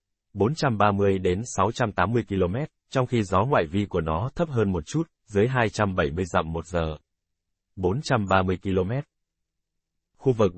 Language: Vietnamese